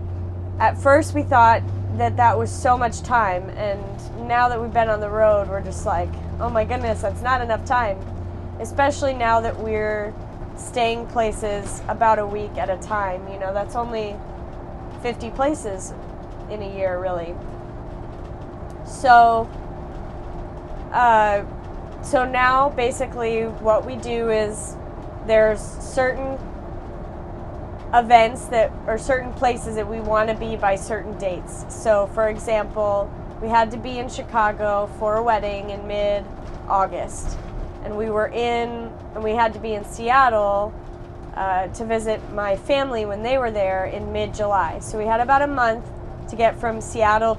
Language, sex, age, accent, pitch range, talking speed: English, female, 20-39, American, 170-230 Hz, 155 wpm